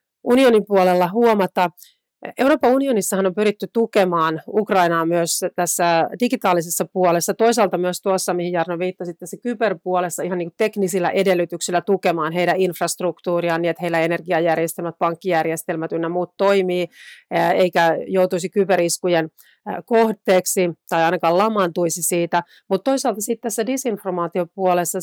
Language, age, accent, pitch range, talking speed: Finnish, 40-59, native, 165-195 Hz, 115 wpm